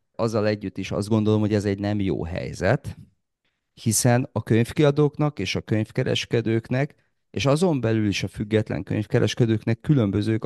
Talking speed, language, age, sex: 145 wpm, Hungarian, 40-59, male